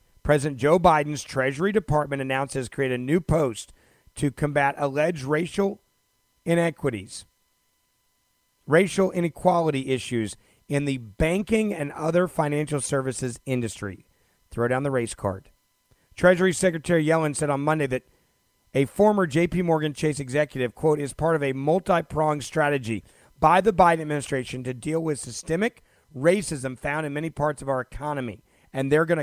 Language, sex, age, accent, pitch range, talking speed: English, male, 40-59, American, 130-165 Hz, 145 wpm